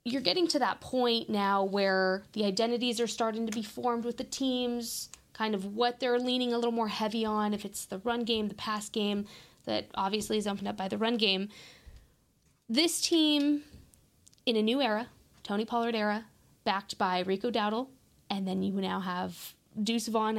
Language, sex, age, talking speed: English, female, 20-39, 190 wpm